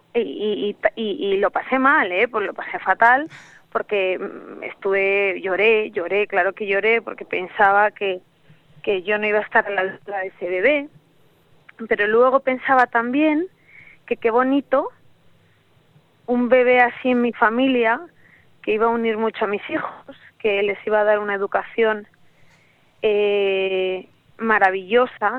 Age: 30-49